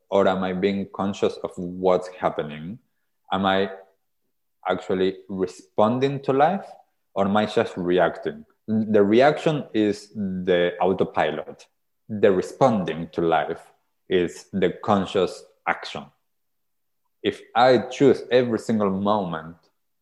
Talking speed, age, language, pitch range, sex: 115 wpm, 30-49, English, 90-105 Hz, male